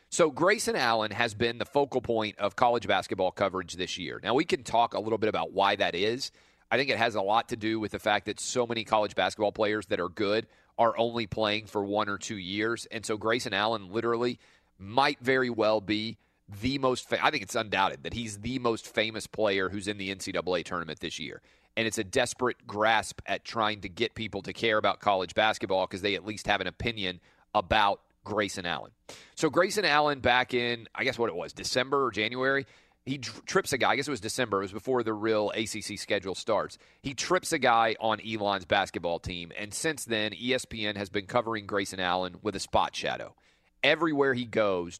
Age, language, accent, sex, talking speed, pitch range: 40-59, English, American, male, 215 wpm, 100-120 Hz